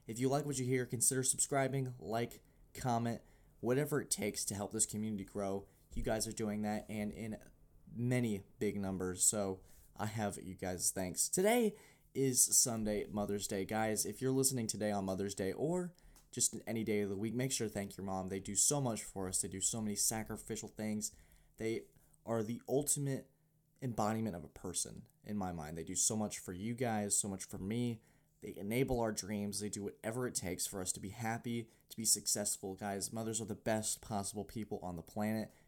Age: 20-39